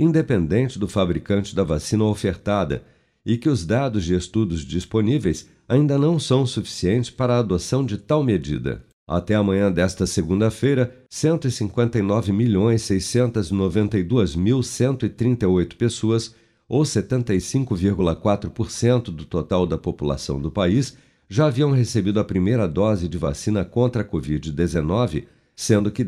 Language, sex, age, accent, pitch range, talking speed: Portuguese, male, 50-69, Brazilian, 90-120 Hz, 115 wpm